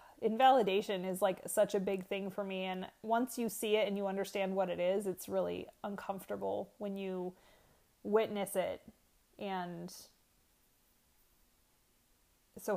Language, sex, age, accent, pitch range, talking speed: English, female, 30-49, American, 180-215 Hz, 135 wpm